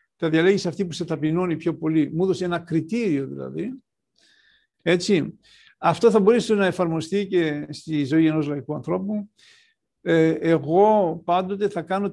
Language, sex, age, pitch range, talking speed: Greek, male, 60-79, 160-200 Hz, 145 wpm